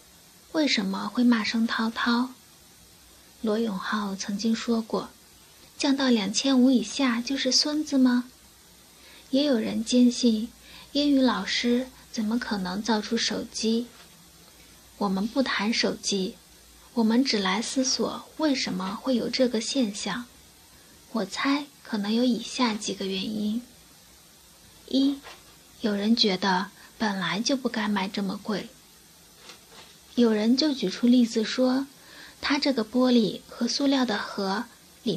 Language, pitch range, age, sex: Chinese, 215-260 Hz, 20-39, female